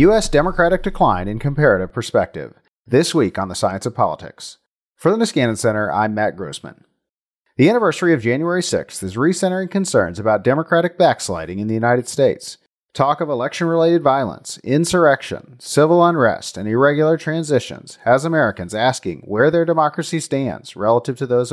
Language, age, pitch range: English, 40-59, 110-165 Hz